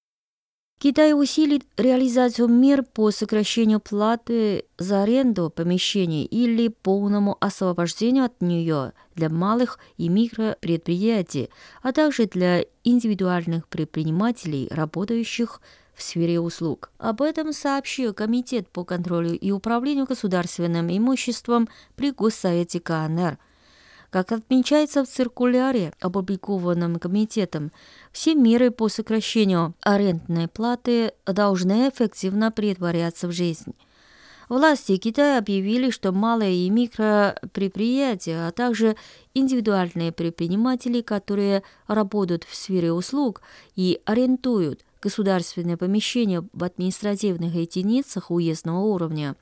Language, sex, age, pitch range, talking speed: Russian, female, 20-39, 175-235 Hz, 100 wpm